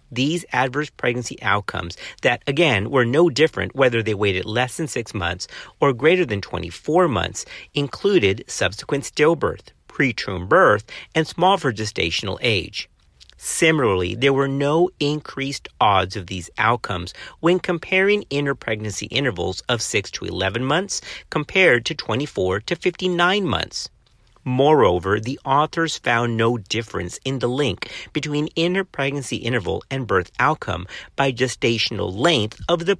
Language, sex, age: English, male, 50-69